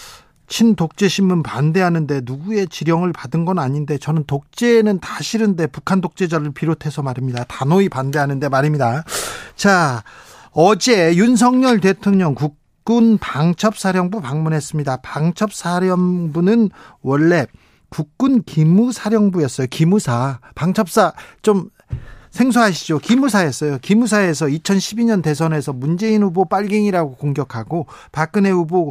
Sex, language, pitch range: male, Korean, 145-205 Hz